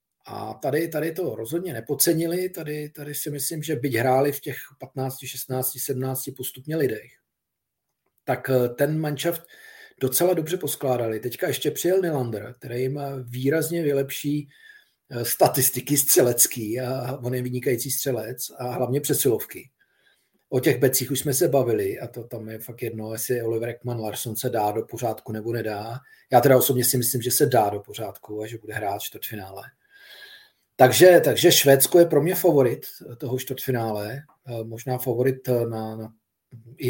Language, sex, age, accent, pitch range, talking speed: Czech, male, 40-59, native, 125-160 Hz, 155 wpm